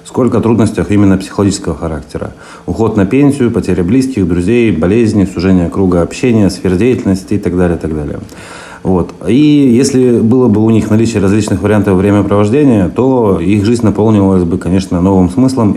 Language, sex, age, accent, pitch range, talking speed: Russian, male, 30-49, native, 90-110 Hz, 160 wpm